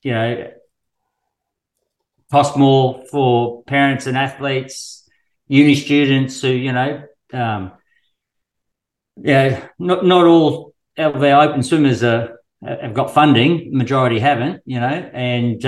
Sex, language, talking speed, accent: male, English, 125 wpm, Australian